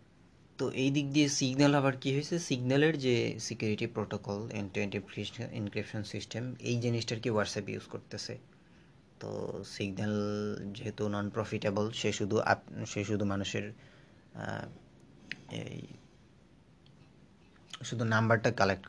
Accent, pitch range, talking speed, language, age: native, 100-120 Hz, 85 wpm, Bengali, 30-49